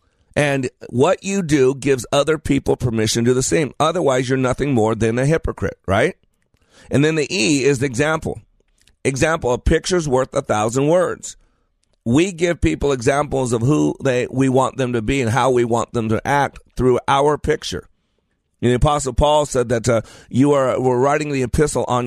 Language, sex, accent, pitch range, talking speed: English, male, American, 120-150 Hz, 190 wpm